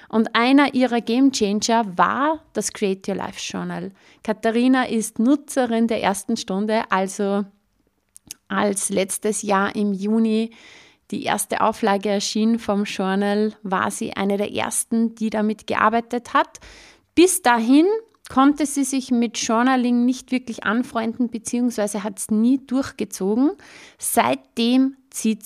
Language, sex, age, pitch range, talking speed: German, female, 30-49, 205-245 Hz, 130 wpm